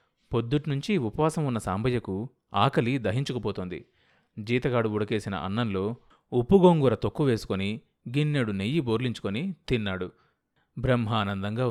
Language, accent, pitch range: Telugu, native, 105-140 Hz